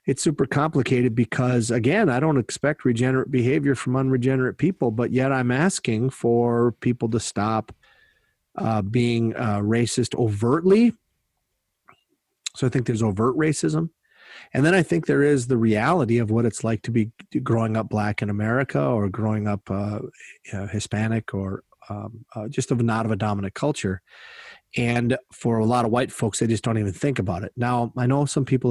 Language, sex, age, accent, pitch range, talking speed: English, male, 40-59, American, 110-130 Hz, 175 wpm